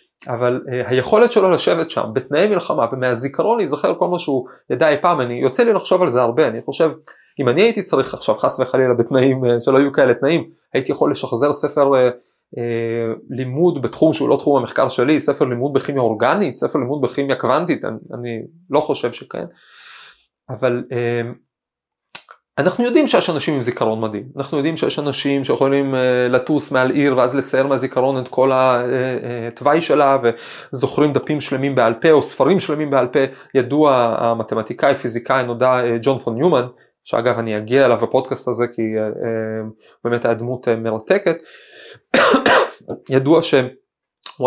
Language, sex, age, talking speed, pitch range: Hebrew, male, 20-39, 160 wpm, 120-145 Hz